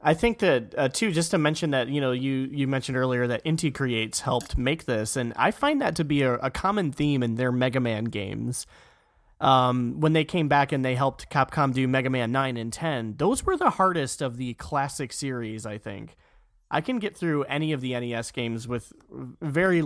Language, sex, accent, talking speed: English, male, American, 220 wpm